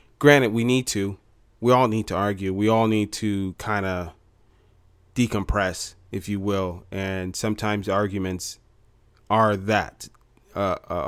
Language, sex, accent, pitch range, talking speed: English, male, American, 100-115 Hz, 135 wpm